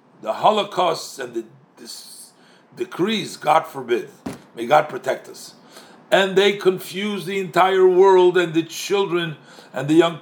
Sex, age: male, 50-69